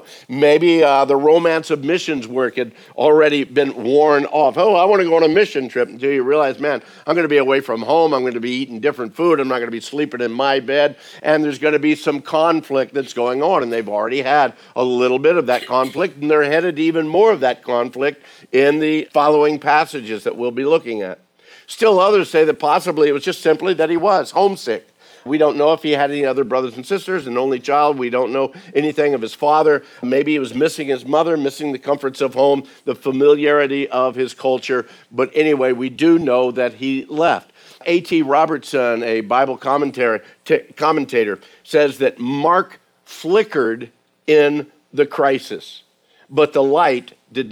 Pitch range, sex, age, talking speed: 130-155 Hz, male, 50-69, 205 wpm